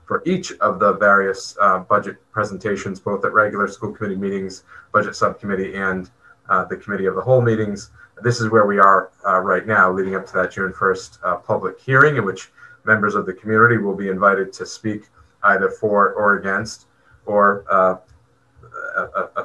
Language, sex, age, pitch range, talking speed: English, male, 30-49, 95-115 Hz, 185 wpm